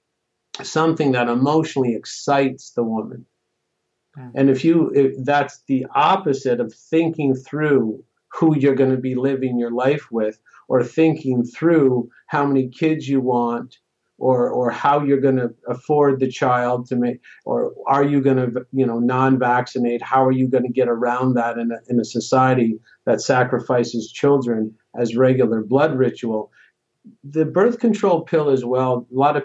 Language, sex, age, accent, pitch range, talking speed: English, male, 50-69, American, 125-145 Hz, 165 wpm